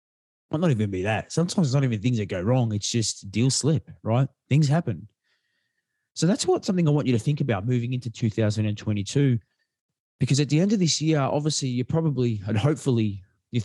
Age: 20-39